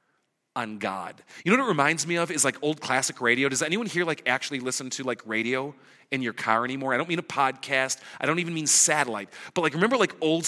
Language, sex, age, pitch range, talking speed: English, male, 40-59, 145-190 Hz, 240 wpm